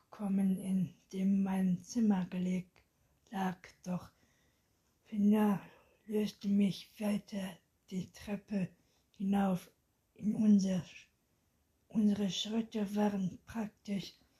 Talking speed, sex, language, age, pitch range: 90 wpm, female, German, 60-79, 195-215 Hz